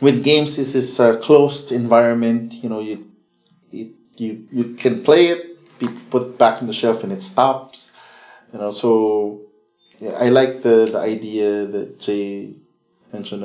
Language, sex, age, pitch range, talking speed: English, male, 20-39, 105-130 Hz, 170 wpm